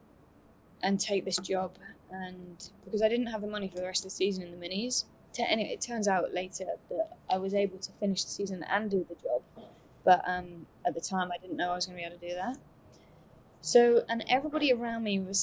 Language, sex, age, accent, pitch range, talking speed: English, female, 20-39, British, 190-225 Hz, 235 wpm